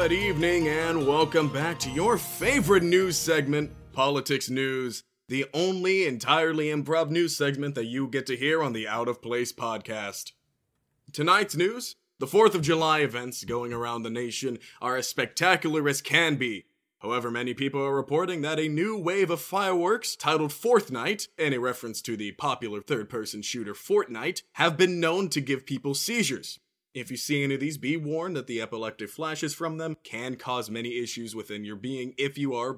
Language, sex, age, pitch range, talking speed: English, male, 20-39, 125-165 Hz, 180 wpm